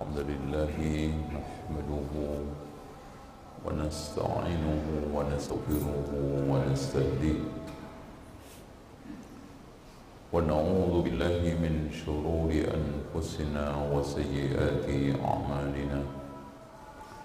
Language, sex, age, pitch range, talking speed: Indonesian, male, 50-69, 75-95 Hz, 45 wpm